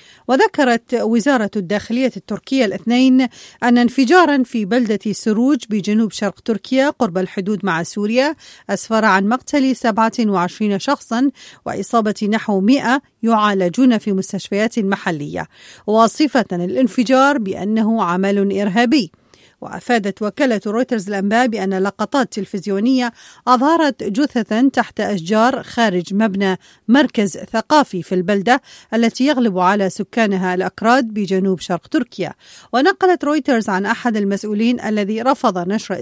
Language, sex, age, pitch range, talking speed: English, female, 40-59, 200-255 Hz, 110 wpm